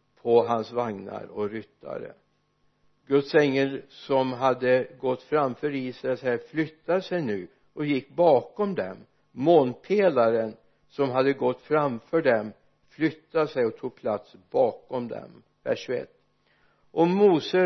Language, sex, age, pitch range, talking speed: Swedish, male, 60-79, 130-165 Hz, 120 wpm